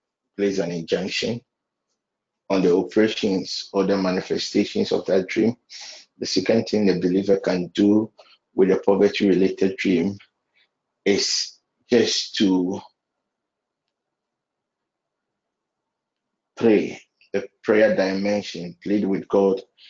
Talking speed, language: 100 wpm, English